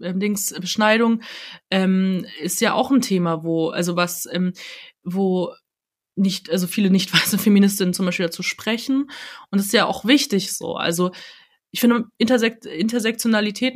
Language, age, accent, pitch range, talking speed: German, 20-39, German, 185-225 Hz, 155 wpm